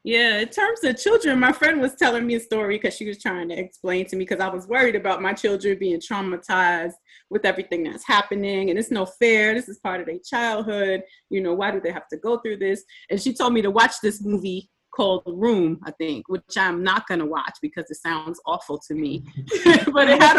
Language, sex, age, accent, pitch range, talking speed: English, female, 30-49, American, 180-220 Hz, 240 wpm